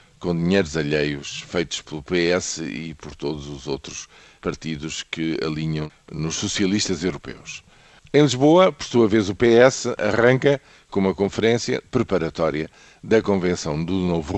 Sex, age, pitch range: male, 50-69, 80-105 Hz